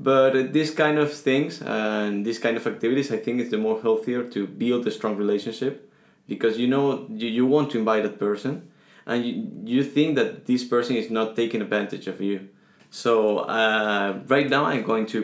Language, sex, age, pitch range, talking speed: English, male, 20-39, 110-130 Hz, 210 wpm